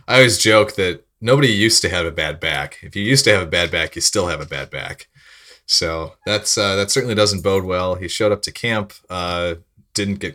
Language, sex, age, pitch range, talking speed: English, male, 30-49, 80-100 Hz, 240 wpm